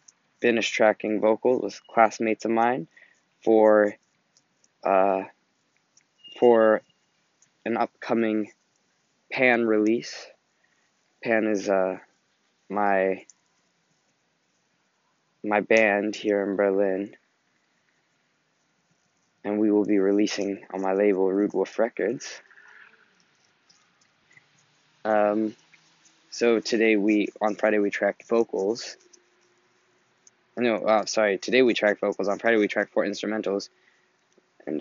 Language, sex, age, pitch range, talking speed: English, male, 20-39, 95-110 Hz, 100 wpm